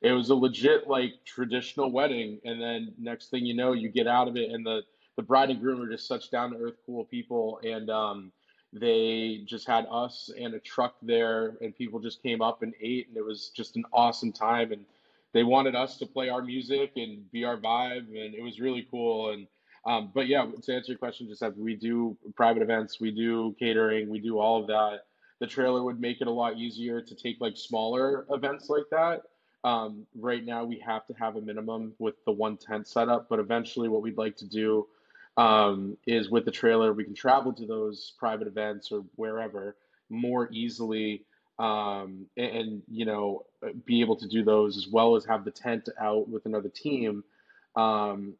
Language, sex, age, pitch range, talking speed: English, male, 20-39, 105-120 Hz, 205 wpm